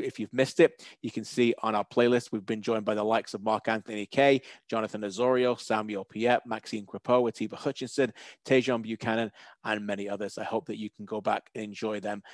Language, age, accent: English, 30-49, British